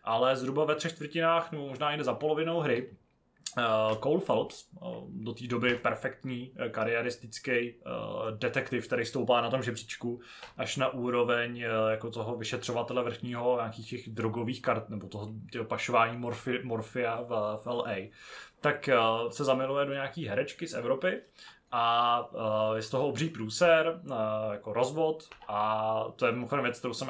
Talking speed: 165 wpm